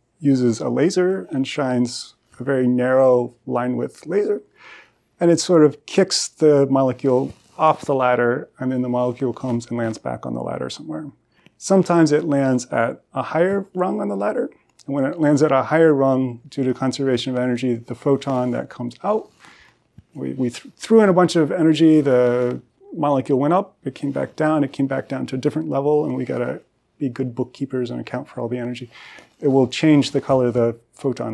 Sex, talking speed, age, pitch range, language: male, 200 wpm, 30-49, 120-150 Hz, English